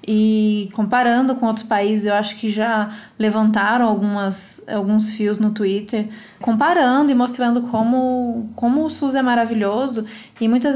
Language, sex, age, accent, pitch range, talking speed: Portuguese, female, 20-39, Brazilian, 215-240 Hz, 145 wpm